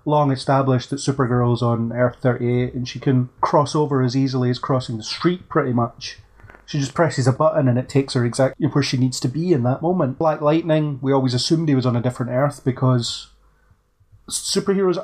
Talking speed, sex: 205 wpm, male